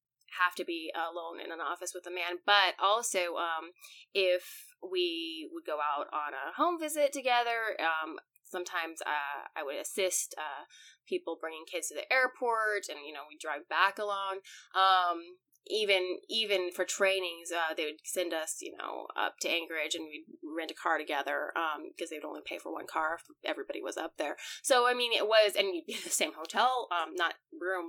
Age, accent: 20-39, American